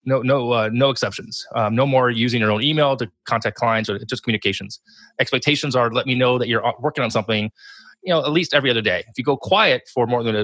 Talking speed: 240 wpm